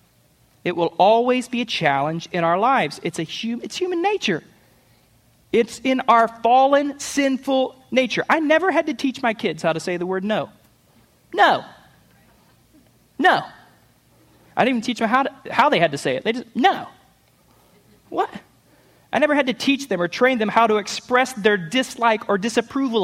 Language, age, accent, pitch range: English, 30-49, American, 205-275 Hz